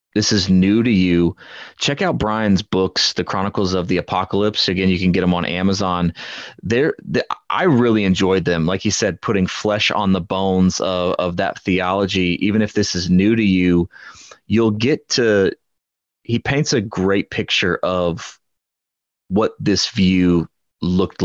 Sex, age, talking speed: male, 30-49, 165 wpm